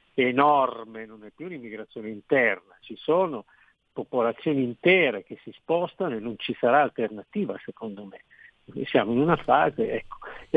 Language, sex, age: Italian, male, 50-69